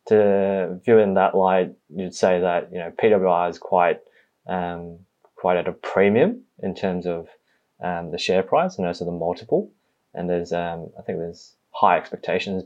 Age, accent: 20-39, Australian